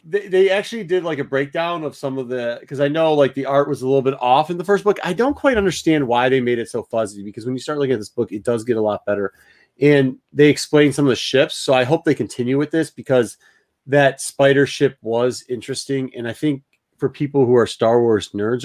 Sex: male